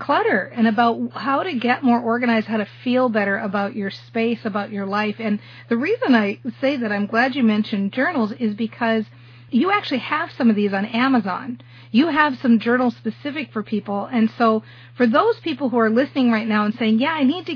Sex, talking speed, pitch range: female, 210 wpm, 200-235 Hz